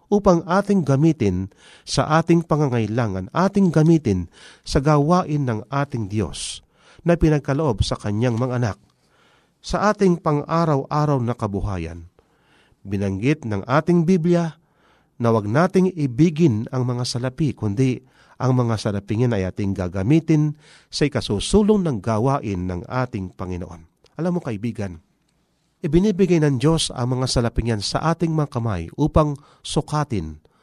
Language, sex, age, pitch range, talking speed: Filipino, male, 40-59, 105-160 Hz, 125 wpm